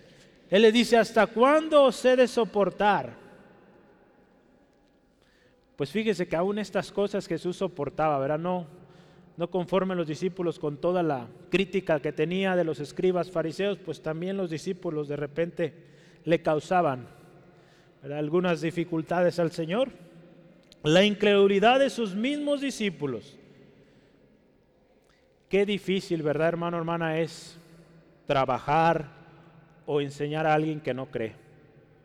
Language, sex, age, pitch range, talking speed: Spanish, male, 30-49, 160-195 Hz, 125 wpm